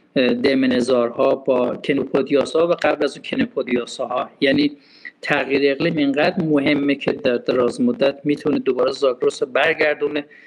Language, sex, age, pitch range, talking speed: Persian, male, 50-69, 135-190 Hz, 125 wpm